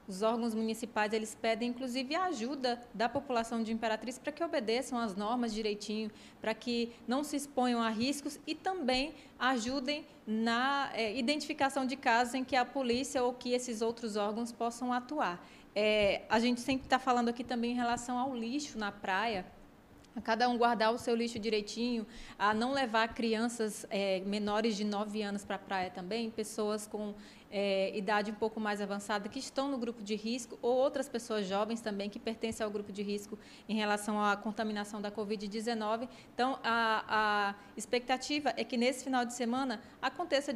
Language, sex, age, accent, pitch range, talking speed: Portuguese, female, 20-39, Brazilian, 215-255 Hz, 180 wpm